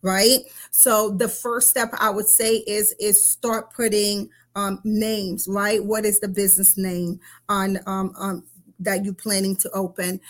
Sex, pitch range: female, 200-235 Hz